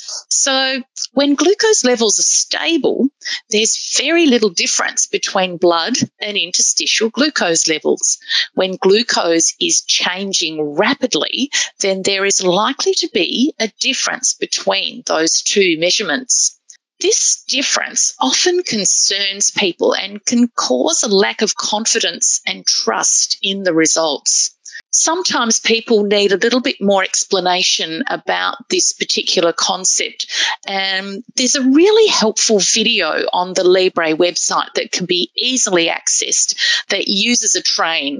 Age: 30-49